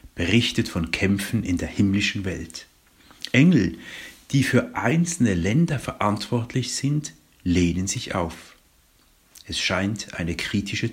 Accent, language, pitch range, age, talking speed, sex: German, German, 90-115 Hz, 60-79, 115 wpm, male